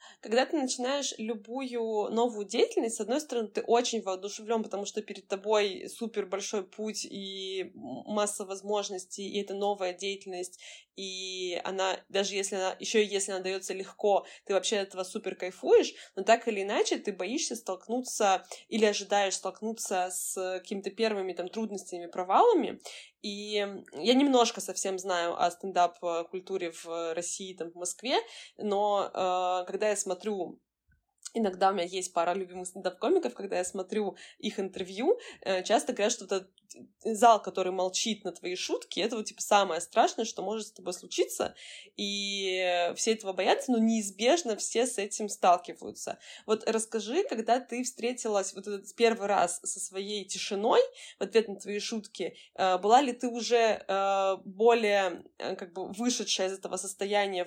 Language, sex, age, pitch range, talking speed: Russian, female, 20-39, 190-225 Hz, 150 wpm